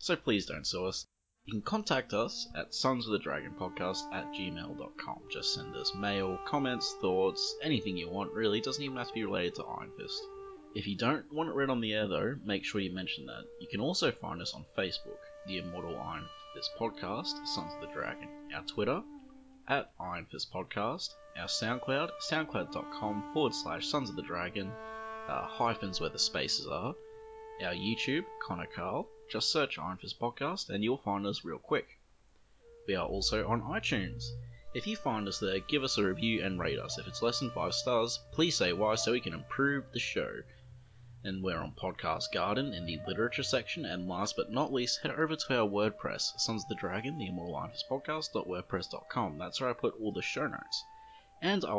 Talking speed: 195 wpm